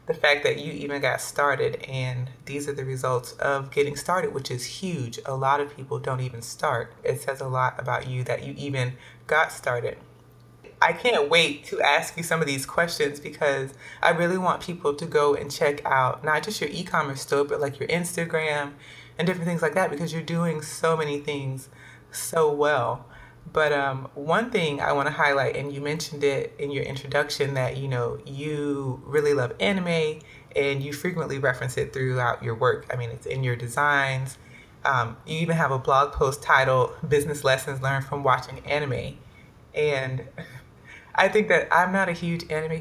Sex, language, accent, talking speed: female, English, American, 190 wpm